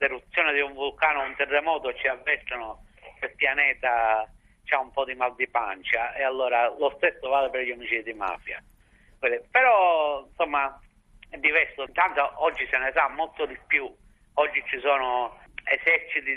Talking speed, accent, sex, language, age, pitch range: 160 wpm, native, male, Italian, 60-79, 125-155 Hz